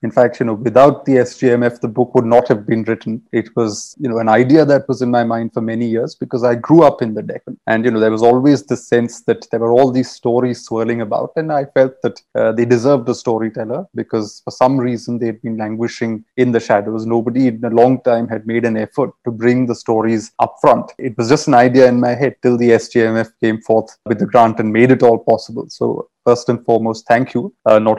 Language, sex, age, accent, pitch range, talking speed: English, male, 30-49, Indian, 115-130 Hz, 245 wpm